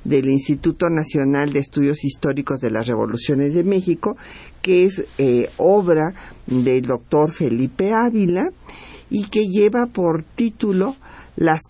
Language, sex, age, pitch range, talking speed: Spanish, male, 50-69, 135-180 Hz, 130 wpm